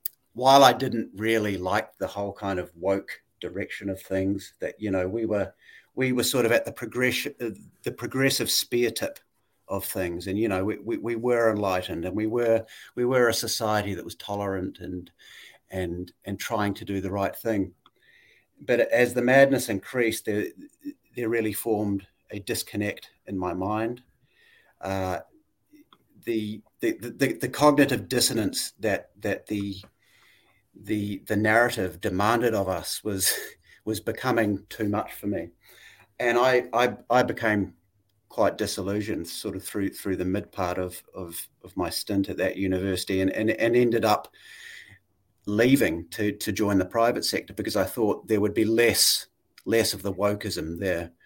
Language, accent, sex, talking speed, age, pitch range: English, Australian, male, 165 wpm, 40-59, 95-115 Hz